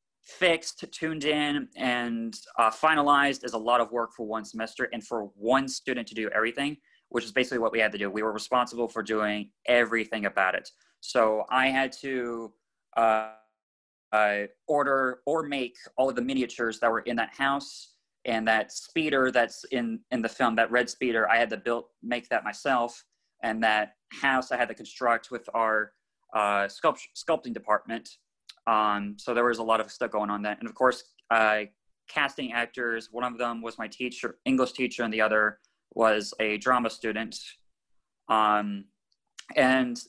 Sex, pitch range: male, 110-130 Hz